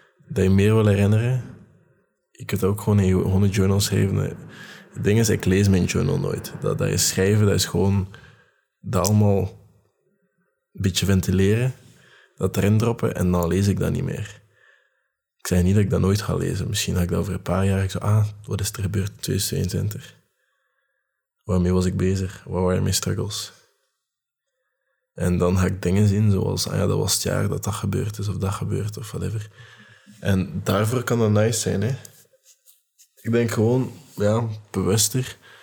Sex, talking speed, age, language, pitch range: male, 185 wpm, 20-39, Dutch, 95-110 Hz